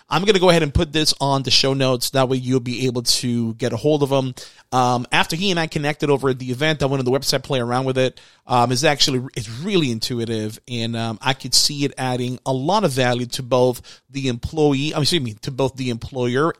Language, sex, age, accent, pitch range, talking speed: English, male, 30-49, American, 125-155 Hz, 255 wpm